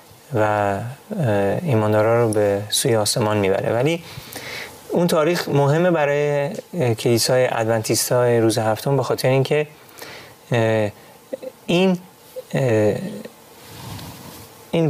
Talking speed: 85 wpm